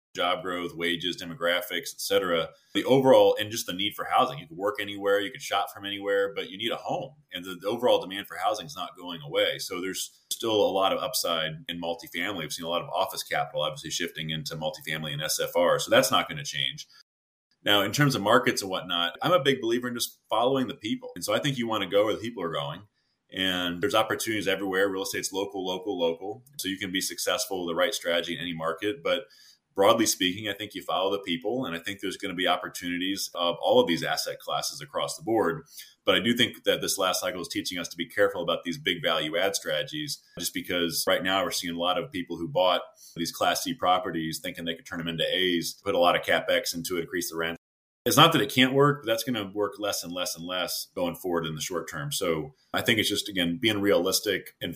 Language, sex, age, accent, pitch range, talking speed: English, male, 30-49, American, 85-130 Hz, 250 wpm